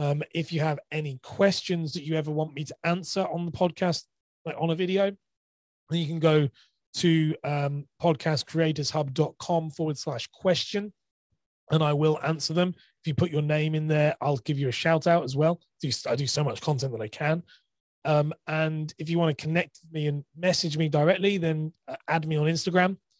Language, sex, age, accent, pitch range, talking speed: English, male, 30-49, British, 125-160 Hz, 200 wpm